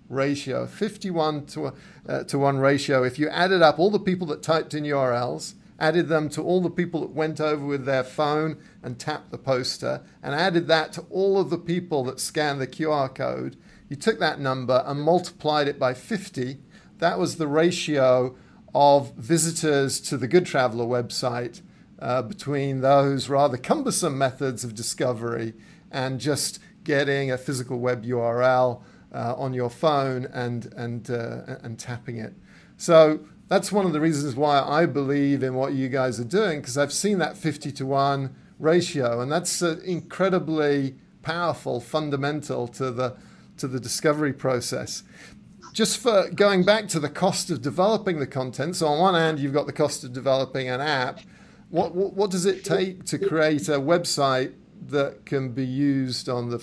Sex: male